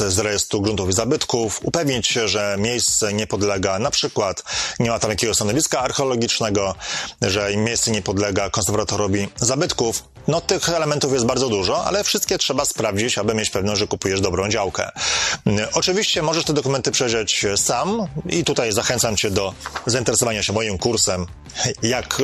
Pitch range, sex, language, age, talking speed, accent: 100-120 Hz, male, Polish, 30-49, 155 wpm, native